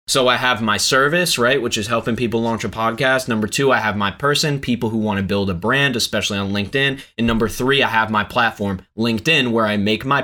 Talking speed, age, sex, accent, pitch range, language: 235 wpm, 20-39, male, American, 105-130 Hz, English